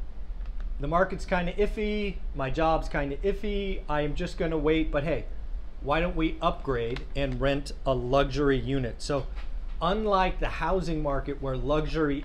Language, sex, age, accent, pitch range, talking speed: English, male, 30-49, American, 130-165 Hz, 165 wpm